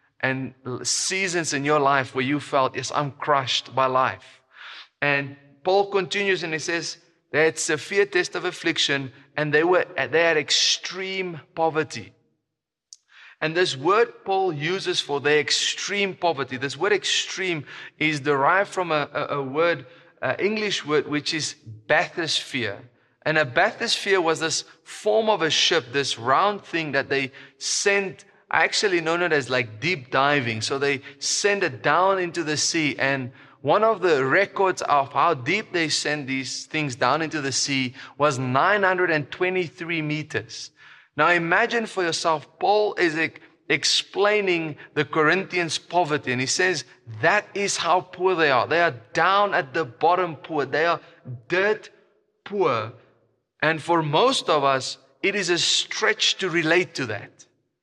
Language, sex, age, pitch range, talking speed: English, male, 30-49, 140-185 Hz, 155 wpm